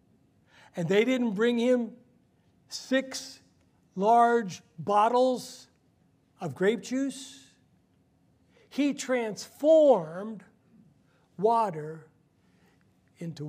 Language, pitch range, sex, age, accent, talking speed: English, 195-255 Hz, male, 60-79, American, 65 wpm